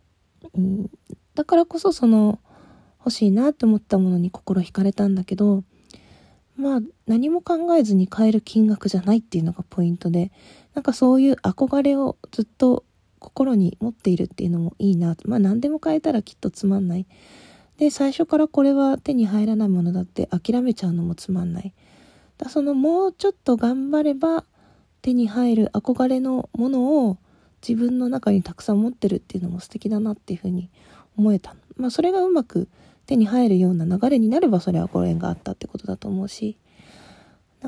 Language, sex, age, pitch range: Japanese, female, 20-39, 185-255 Hz